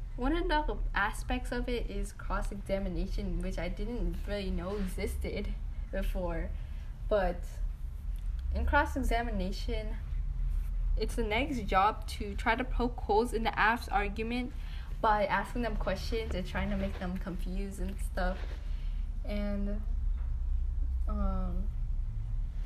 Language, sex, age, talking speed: English, female, 10-29, 120 wpm